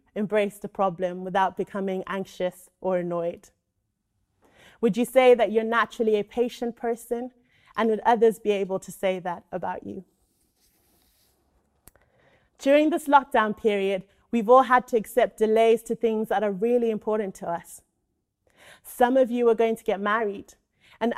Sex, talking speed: female, 155 wpm